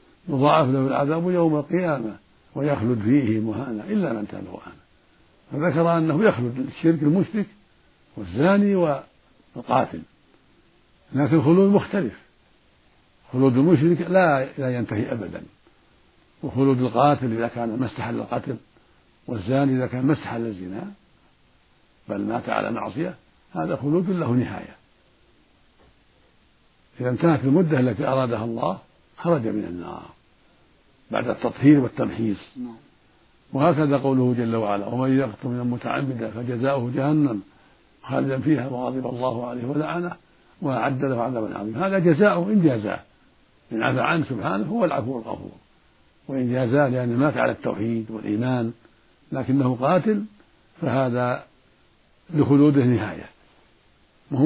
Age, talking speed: 60-79, 110 wpm